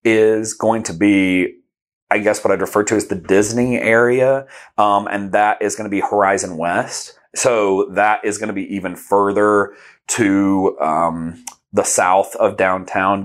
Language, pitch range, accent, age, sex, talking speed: English, 95-105 Hz, American, 30-49, male, 170 wpm